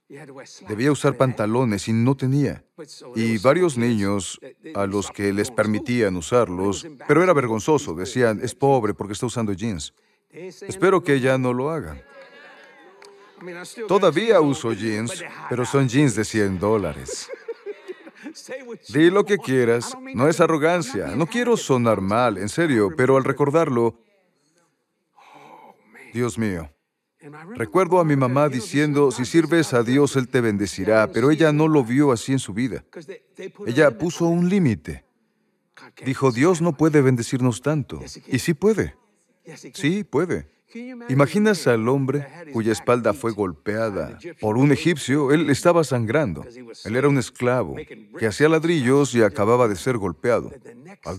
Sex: male